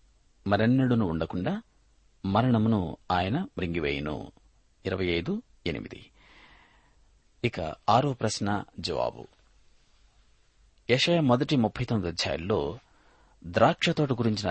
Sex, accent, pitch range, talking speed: male, native, 95-125 Hz, 45 wpm